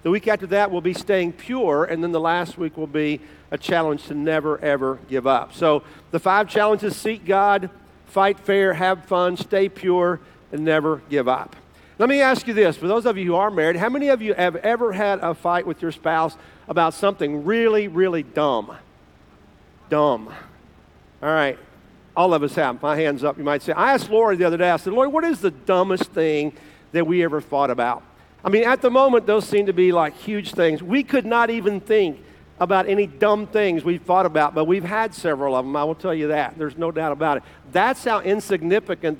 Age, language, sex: 50-69, English, male